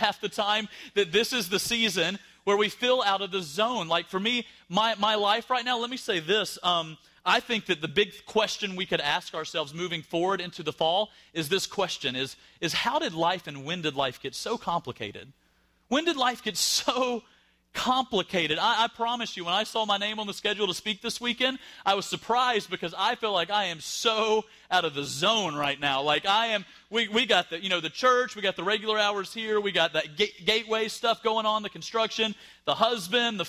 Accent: American